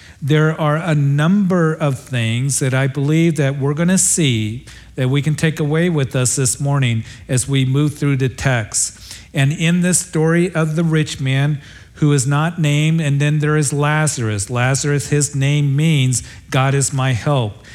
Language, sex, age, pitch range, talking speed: English, male, 50-69, 125-150 Hz, 185 wpm